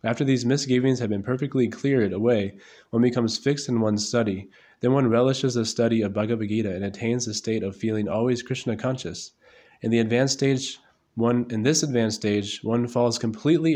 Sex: male